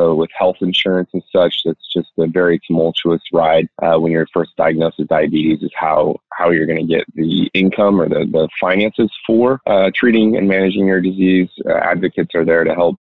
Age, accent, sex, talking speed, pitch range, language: 20-39, American, male, 210 wpm, 80-90 Hz, English